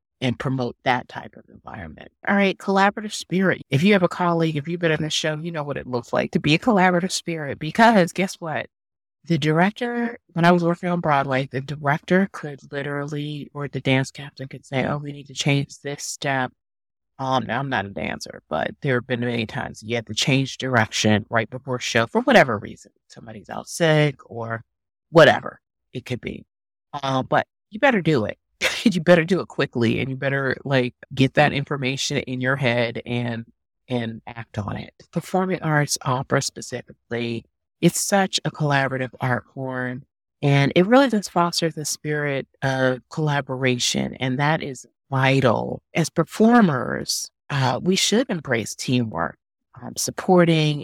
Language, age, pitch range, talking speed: English, 30-49, 125-165 Hz, 175 wpm